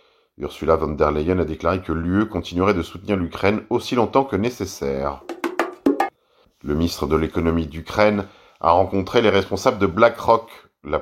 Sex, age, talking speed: male, 40-59, 150 wpm